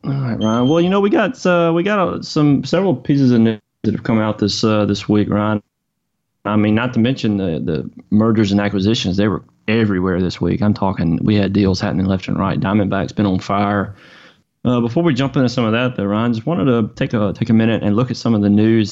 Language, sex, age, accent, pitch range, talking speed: English, male, 30-49, American, 100-115 Hz, 245 wpm